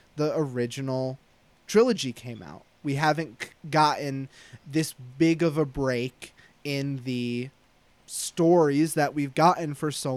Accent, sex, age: American, male, 20-39